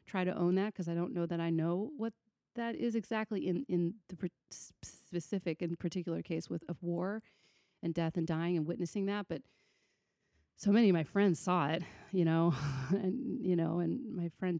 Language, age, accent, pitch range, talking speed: English, 30-49, American, 160-185 Hz, 200 wpm